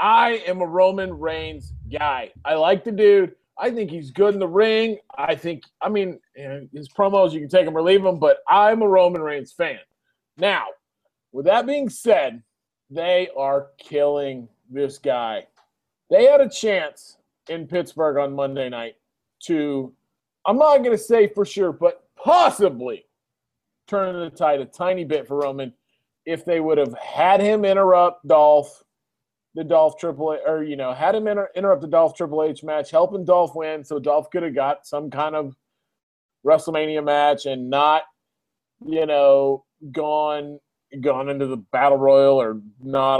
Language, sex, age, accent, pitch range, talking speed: English, male, 40-59, American, 140-195 Hz, 170 wpm